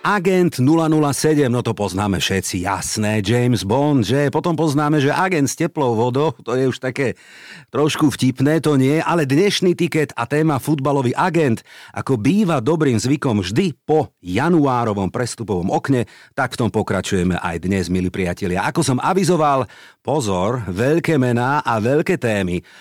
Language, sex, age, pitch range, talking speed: Slovak, male, 50-69, 105-155 Hz, 155 wpm